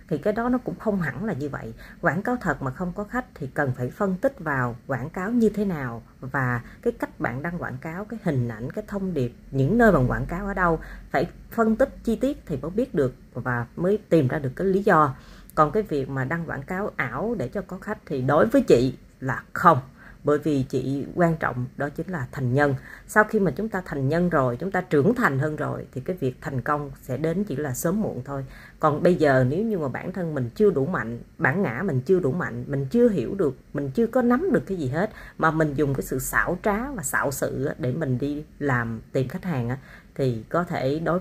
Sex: female